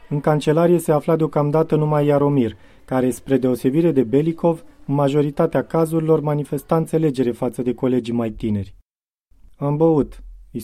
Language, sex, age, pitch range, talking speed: Romanian, male, 30-49, 130-165 Hz, 135 wpm